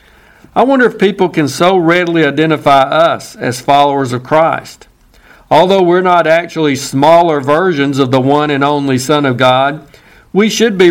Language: English